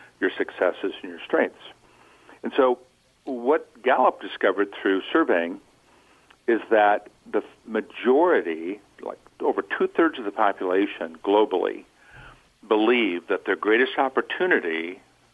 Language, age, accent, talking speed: English, 60-79, American, 110 wpm